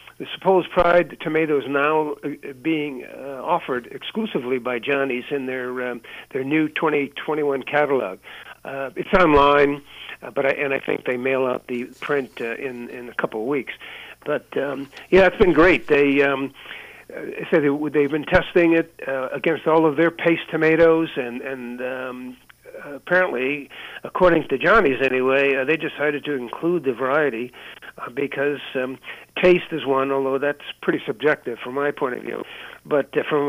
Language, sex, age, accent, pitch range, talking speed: English, male, 50-69, American, 130-155 Hz, 165 wpm